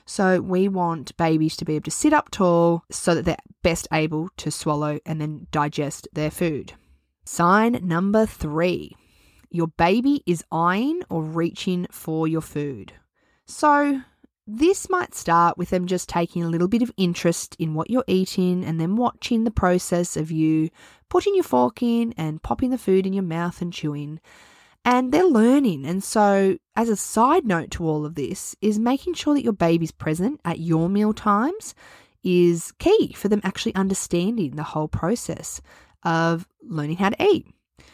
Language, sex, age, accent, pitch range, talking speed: English, female, 20-39, Australian, 160-215 Hz, 175 wpm